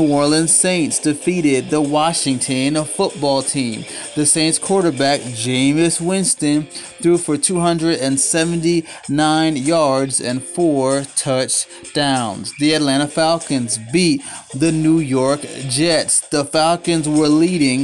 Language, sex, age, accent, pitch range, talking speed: English, male, 30-49, American, 135-165 Hz, 110 wpm